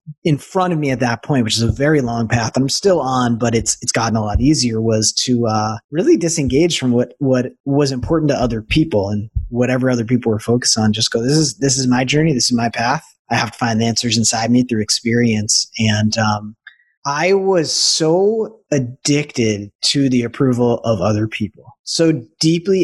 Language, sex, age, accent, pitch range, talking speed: English, male, 30-49, American, 115-145 Hz, 210 wpm